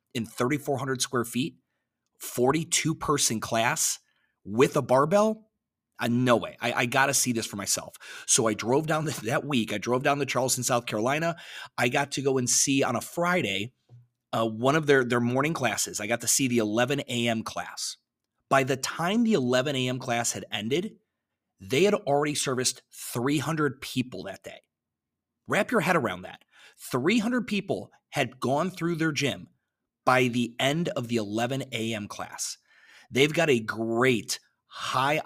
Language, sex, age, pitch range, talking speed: English, male, 30-49, 115-140 Hz, 170 wpm